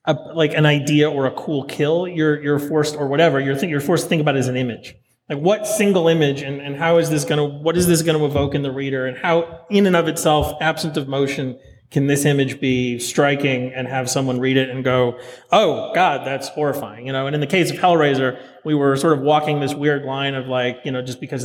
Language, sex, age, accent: English, male, 30-49, American